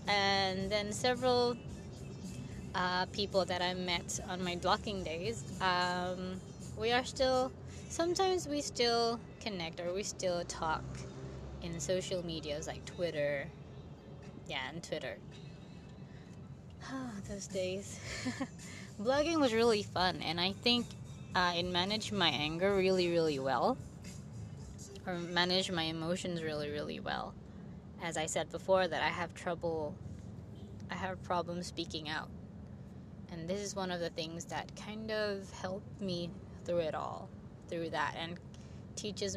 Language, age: English, 20-39